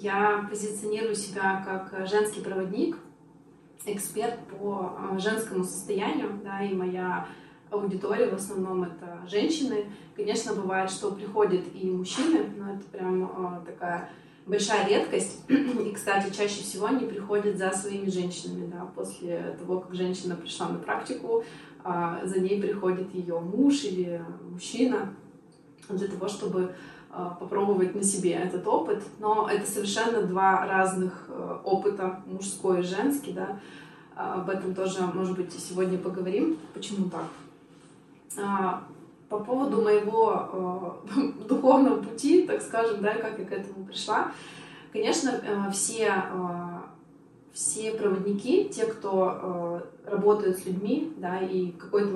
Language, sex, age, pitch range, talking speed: Russian, female, 20-39, 185-210 Hz, 125 wpm